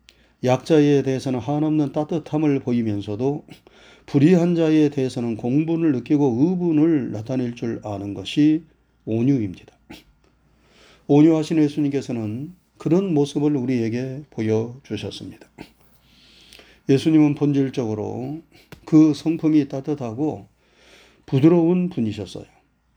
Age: 30-49